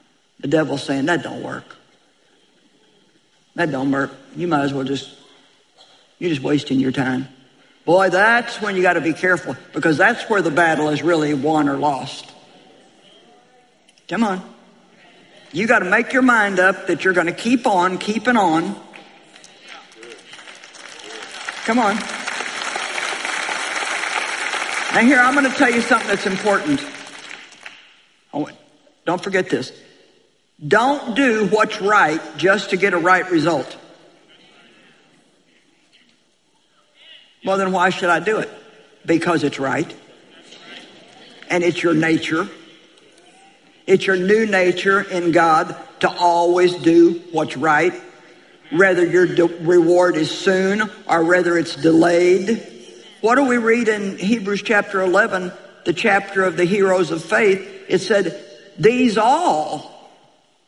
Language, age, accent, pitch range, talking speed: English, 60-79, American, 165-205 Hz, 130 wpm